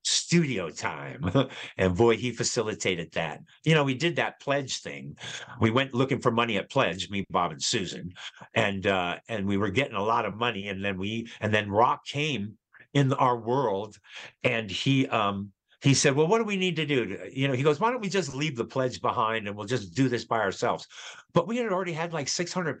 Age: 50-69